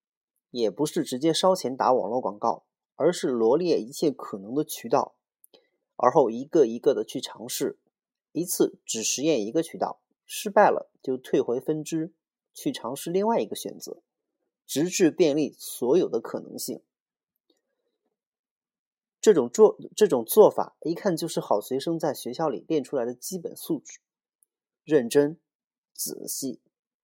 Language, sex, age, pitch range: Chinese, male, 30-49, 135-215 Hz